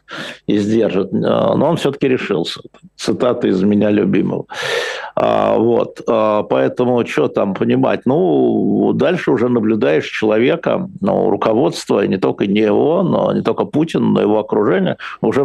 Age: 50-69